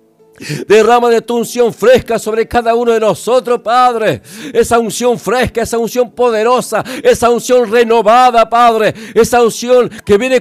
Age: 60-79